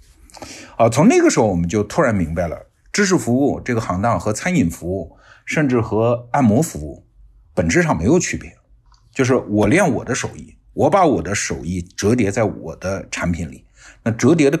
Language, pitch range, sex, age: Chinese, 90-125 Hz, male, 50-69